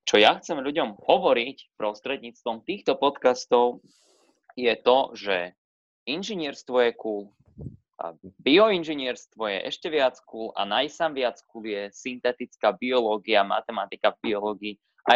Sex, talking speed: male, 115 wpm